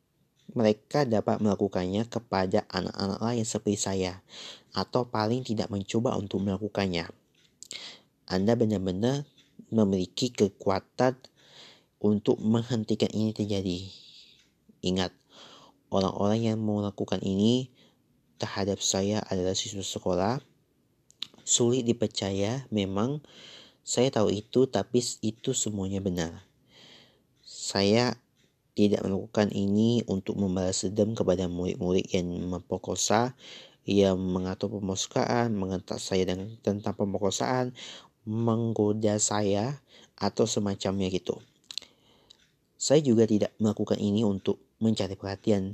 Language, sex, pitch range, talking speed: Indonesian, male, 95-115 Hz, 95 wpm